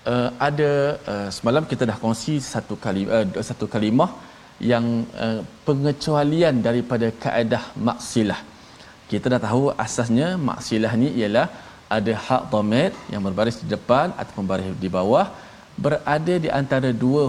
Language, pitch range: Malayalam, 105-140 Hz